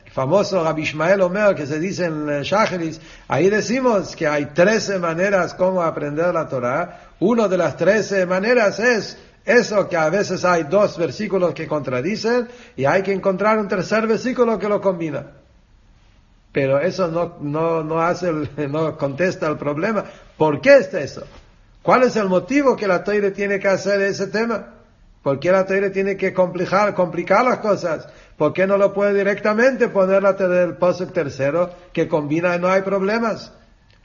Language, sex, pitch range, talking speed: English, male, 165-210 Hz, 175 wpm